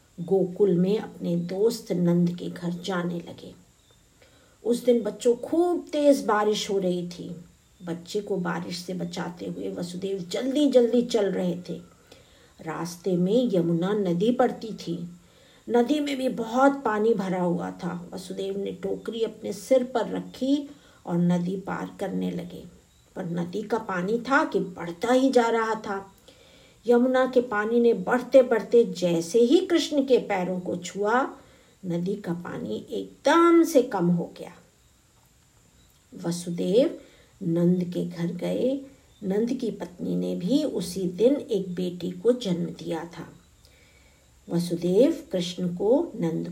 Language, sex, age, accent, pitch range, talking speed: Hindi, female, 50-69, native, 175-240 Hz, 140 wpm